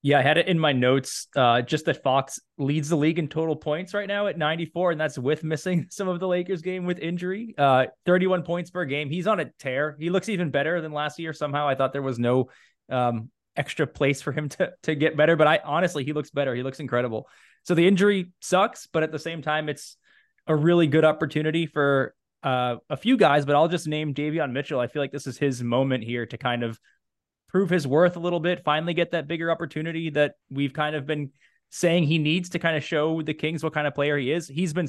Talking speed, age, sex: 245 wpm, 20-39, male